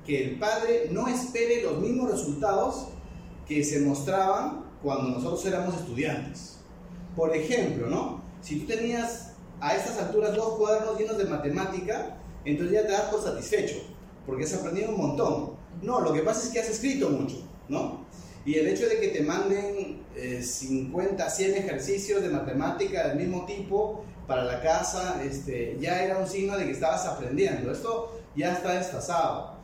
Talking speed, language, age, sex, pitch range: 165 wpm, Spanish, 40-59, male, 145-220 Hz